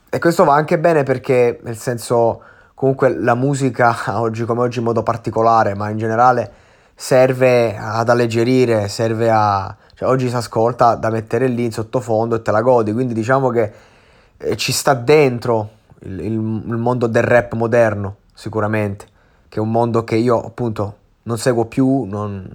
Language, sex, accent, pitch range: Italian, male, native, 110-130 Hz